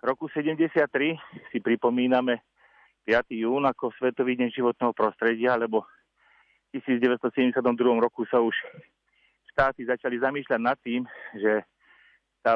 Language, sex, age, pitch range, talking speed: Slovak, male, 40-59, 115-125 Hz, 115 wpm